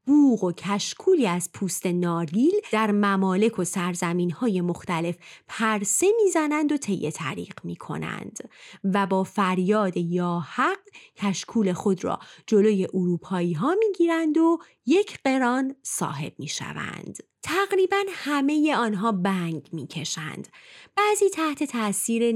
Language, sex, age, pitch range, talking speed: Persian, female, 30-49, 180-275 Hz, 120 wpm